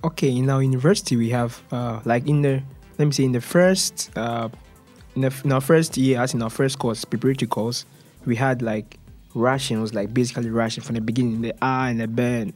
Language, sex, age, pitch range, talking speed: Russian, male, 20-39, 115-145 Hz, 230 wpm